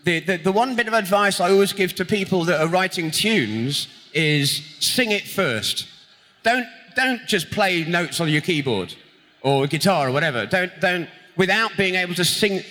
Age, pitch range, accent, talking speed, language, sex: 30-49, 140-190 Hz, British, 185 wpm, Polish, male